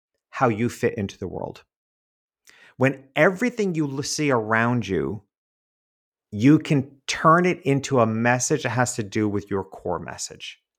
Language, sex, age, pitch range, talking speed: English, male, 50-69, 100-130 Hz, 150 wpm